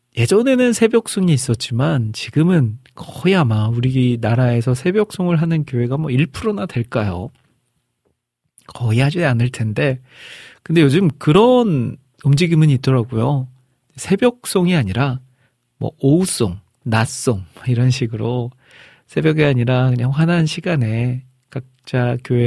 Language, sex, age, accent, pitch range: Korean, male, 40-59, native, 120-155 Hz